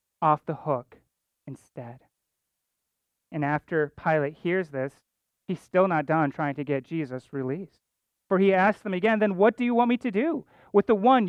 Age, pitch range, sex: 30-49, 140-190 Hz, male